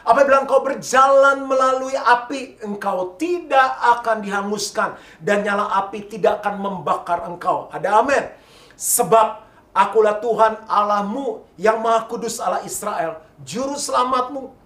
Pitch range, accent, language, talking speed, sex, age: 180-255 Hz, native, Indonesian, 120 wpm, male, 40-59